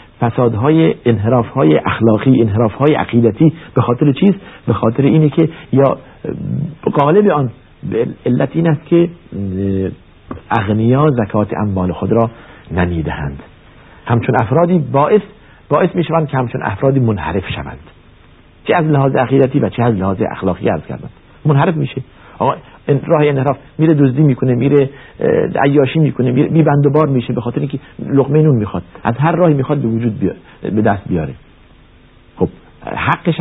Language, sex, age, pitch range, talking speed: Persian, male, 60-79, 115-145 Hz, 150 wpm